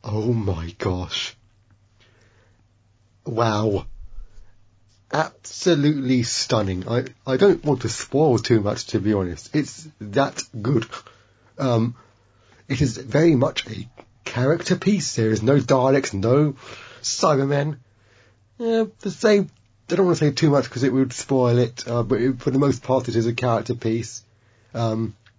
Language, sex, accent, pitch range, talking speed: English, male, British, 105-135 Hz, 145 wpm